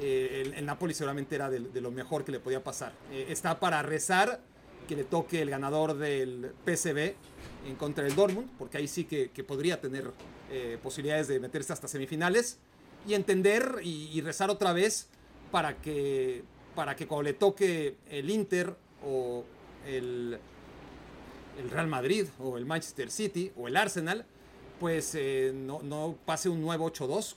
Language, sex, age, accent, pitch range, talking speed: Spanish, male, 40-59, Mexican, 140-190 Hz, 170 wpm